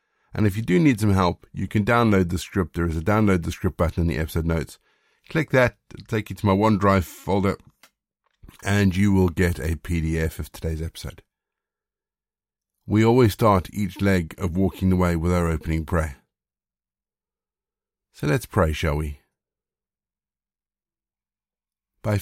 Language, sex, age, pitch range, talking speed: English, male, 50-69, 90-110 Hz, 160 wpm